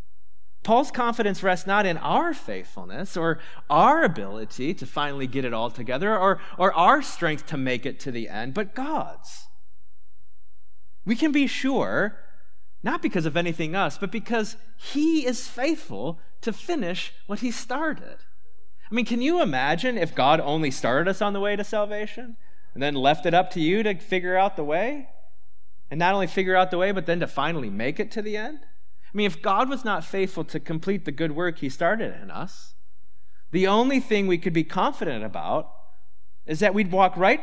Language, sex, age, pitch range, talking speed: English, male, 30-49, 155-225 Hz, 190 wpm